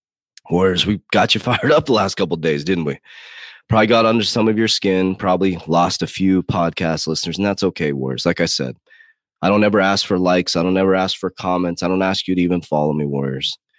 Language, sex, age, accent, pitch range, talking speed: English, male, 30-49, American, 80-95 Hz, 235 wpm